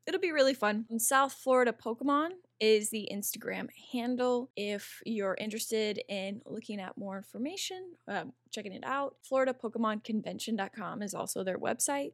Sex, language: female, English